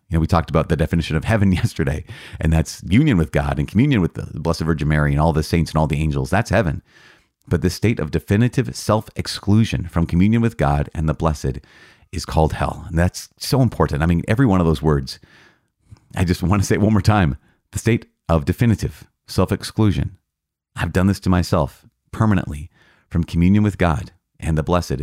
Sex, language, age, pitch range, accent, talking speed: male, English, 30-49, 80-105 Hz, American, 205 wpm